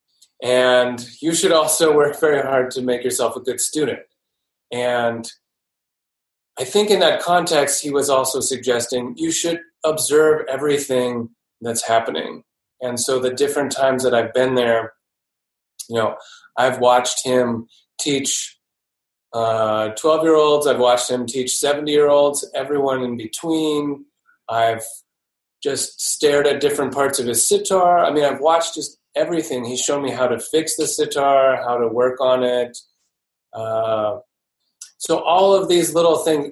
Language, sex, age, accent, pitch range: Japanese, male, 30-49, American, 125-150 Hz